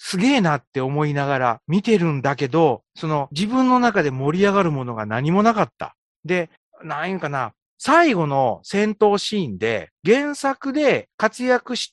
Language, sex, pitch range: Japanese, male, 160-240 Hz